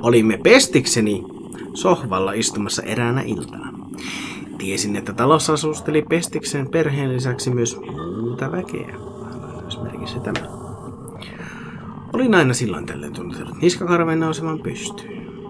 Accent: native